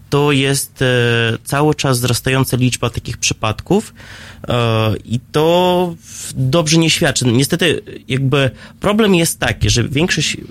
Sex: male